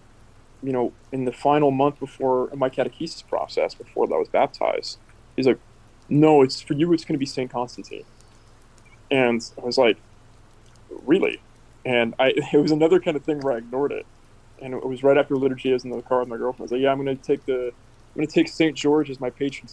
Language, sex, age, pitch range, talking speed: English, male, 20-39, 120-150 Hz, 230 wpm